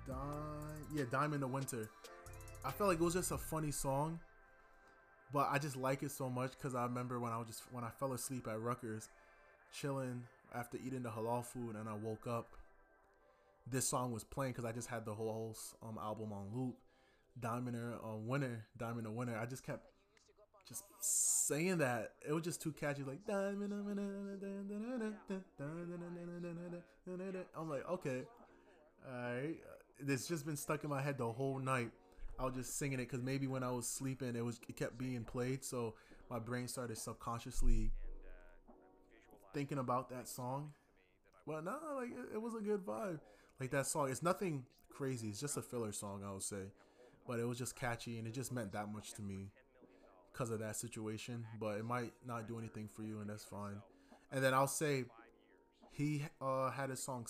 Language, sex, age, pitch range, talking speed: English, male, 20-39, 115-145 Hz, 185 wpm